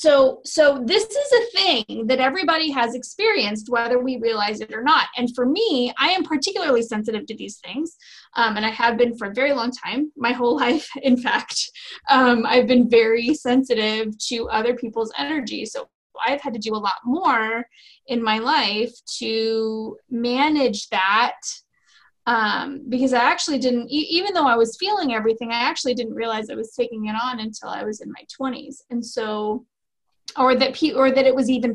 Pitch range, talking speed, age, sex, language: 225-275 Hz, 190 wpm, 20-39, female, English